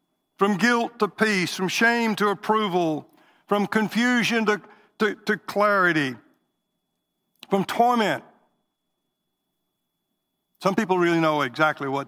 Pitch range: 165-220 Hz